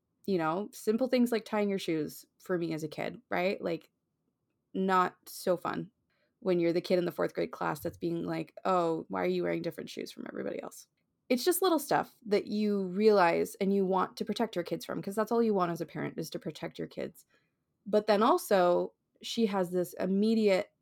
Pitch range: 170-195 Hz